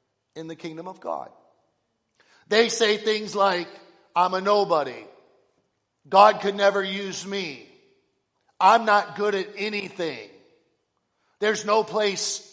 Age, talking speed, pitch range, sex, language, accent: 50-69, 120 wpm, 175-225 Hz, male, English, American